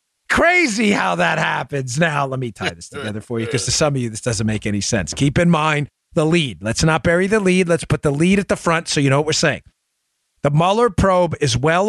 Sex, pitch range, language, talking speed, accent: male, 155-215 Hz, English, 250 wpm, American